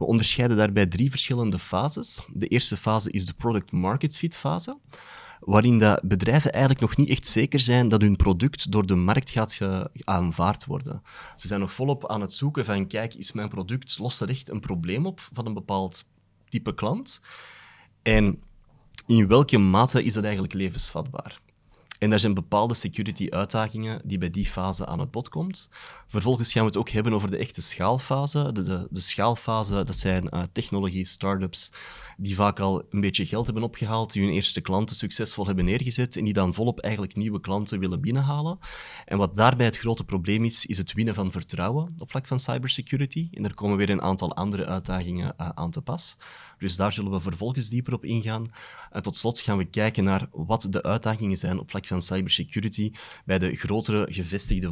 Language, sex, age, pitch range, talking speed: Dutch, male, 30-49, 95-120 Hz, 185 wpm